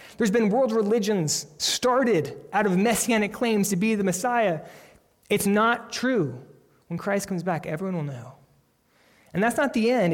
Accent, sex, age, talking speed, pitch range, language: American, male, 20-39, 165 wpm, 150-195 Hz, English